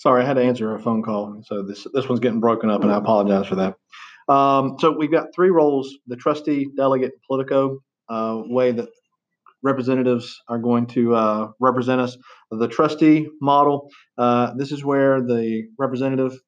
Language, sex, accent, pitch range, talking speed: English, male, American, 115-140 Hz, 180 wpm